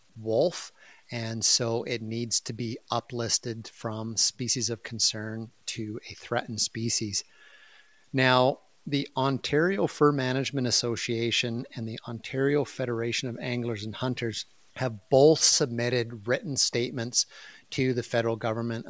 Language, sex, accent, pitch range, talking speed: English, male, American, 115-130 Hz, 125 wpm